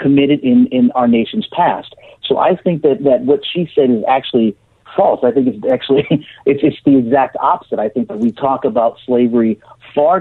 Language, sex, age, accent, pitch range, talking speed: English, male, 40-59, American, 120-160 Hz, 200 wpm